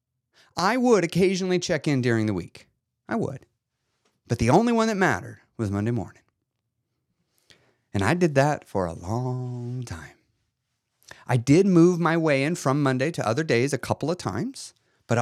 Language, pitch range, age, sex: English, 120-170 Hz, 30-49, male